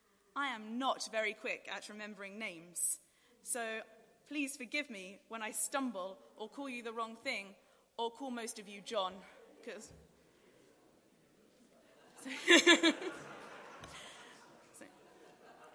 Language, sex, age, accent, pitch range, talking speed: English, female, 20-39, British, 215-275 Hz, 105 wpm